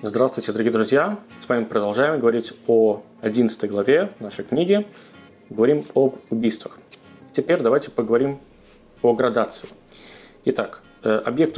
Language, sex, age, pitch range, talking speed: Russian, male, 20-39, 110-140 Hz, 115 wpm